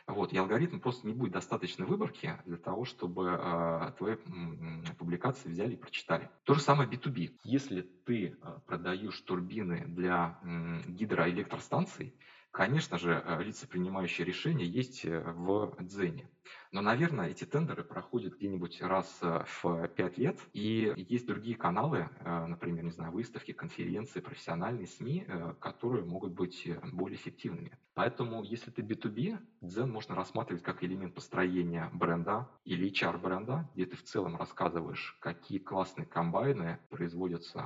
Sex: male